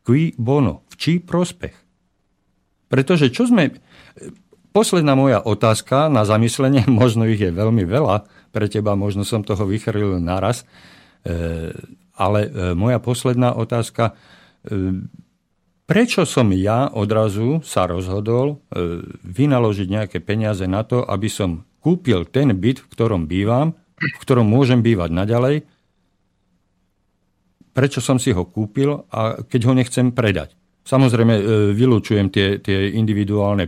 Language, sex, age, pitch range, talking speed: Slovak, male, 50-69, 95-125 Hz, 120 wpm